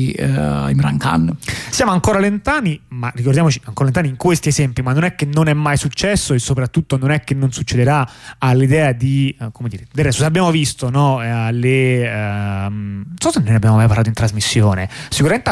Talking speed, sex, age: 195 wpm, male, 30-49